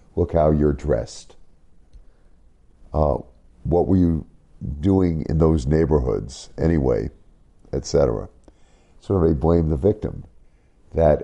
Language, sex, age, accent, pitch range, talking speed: English, male, 50-69, American, 70-80 Hz, 115 wpm